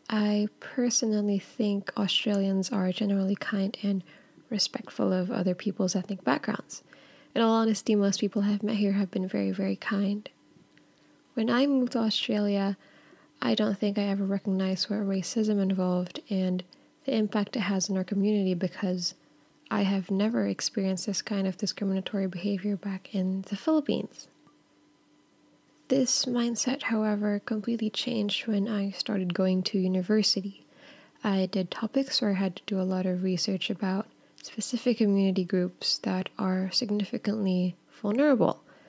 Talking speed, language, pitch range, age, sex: 145 wpm, English, 190-220 Hz, 10-29, female